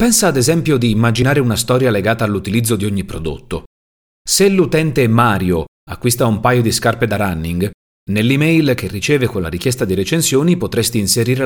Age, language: 40-59, Italian